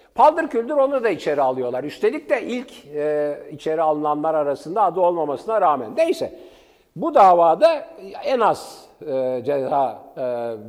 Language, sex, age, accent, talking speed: Turkish, male, 60-79, native, 135 wpm